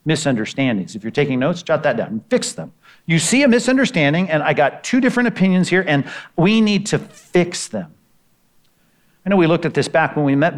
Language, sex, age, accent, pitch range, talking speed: English, male, 50-69, American, 145-185 Hz, 215 wpm